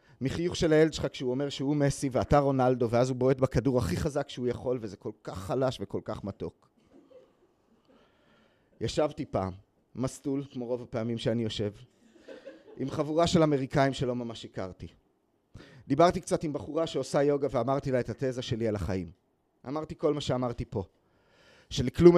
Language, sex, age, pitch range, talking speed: Hebrew, male, 30-49, 110-135 Hz, 160 wpm